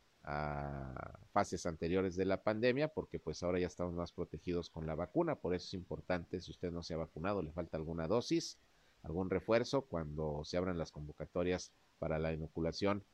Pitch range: 80-100 Hz